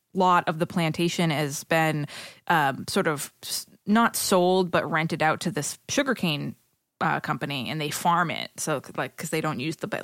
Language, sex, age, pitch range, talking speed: English, female, 20-39, 150-180 Hz, 185 wpm